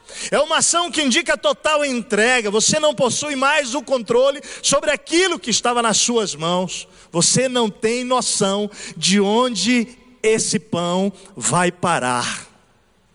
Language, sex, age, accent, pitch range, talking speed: Portuguese, male, 40-59, Brazilian, 195-255 Hz, 135 wpm